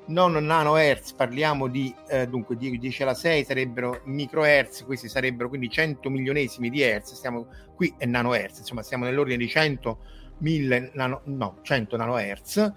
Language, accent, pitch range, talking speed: Italian, native, 120-160 Hz, 150 wpm